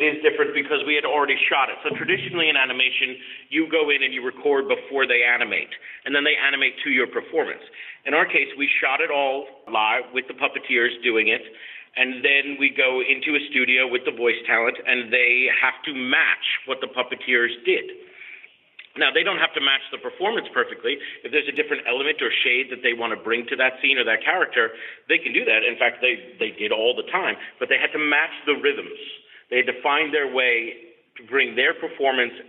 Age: 40-59